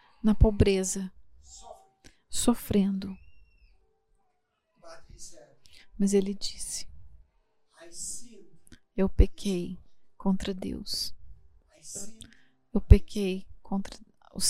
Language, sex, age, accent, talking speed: English, female, 30-49, Brazilian, 60 wpm